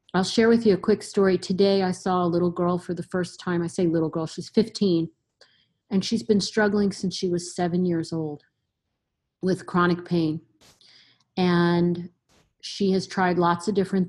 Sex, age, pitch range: female, 40-59, 170-205 Hz